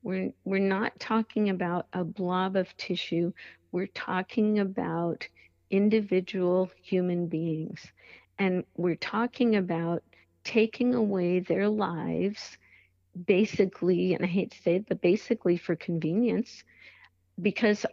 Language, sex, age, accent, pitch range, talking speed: English, female, 50-69, American, 180-215 Hz, 115 wpm